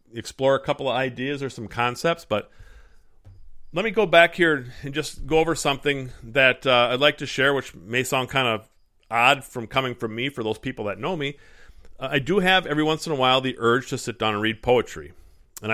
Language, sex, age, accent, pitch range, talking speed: English, male, 40-59, American, 110-140 Hz, 225 wpm